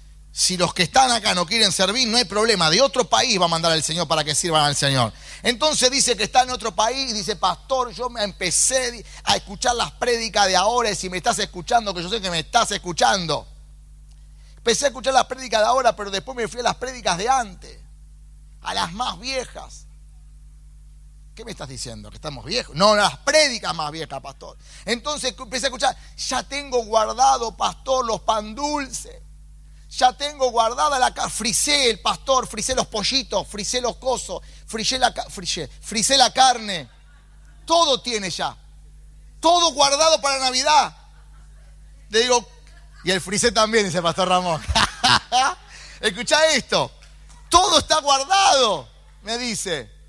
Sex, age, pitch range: male, 30-49, 170-260 Hz